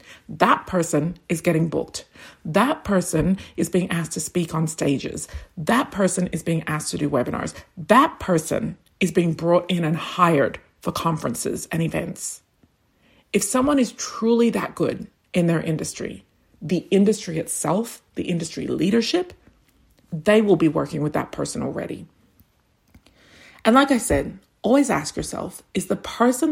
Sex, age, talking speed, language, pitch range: female, 40-59, 150 wpm, English, 165-215 Hz